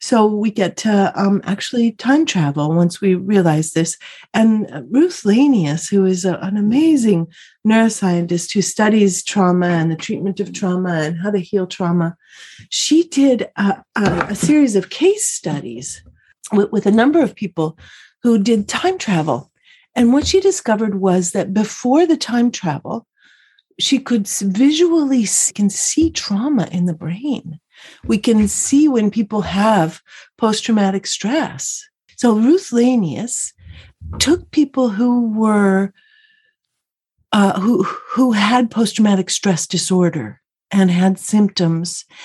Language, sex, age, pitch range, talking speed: English, female, 40-59, 185-255 Hz, 140 wpm